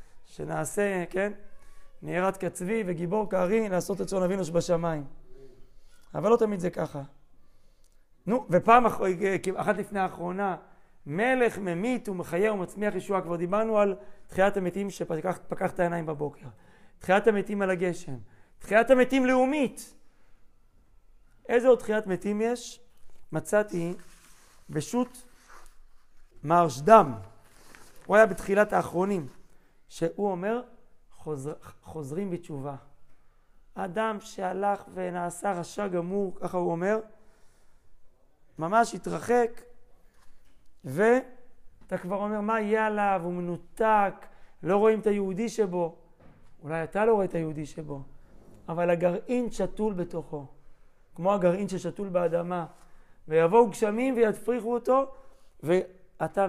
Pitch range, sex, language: 165-215 Hz, male, Hebrew